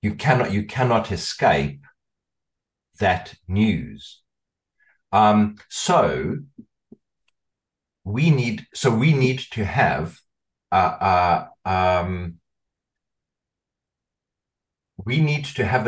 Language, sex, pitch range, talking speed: English, male, 95-115 Hz, 85 wpm